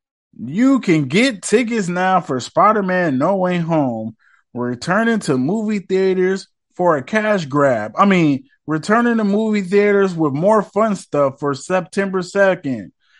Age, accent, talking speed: 20-39, American, 145 wpm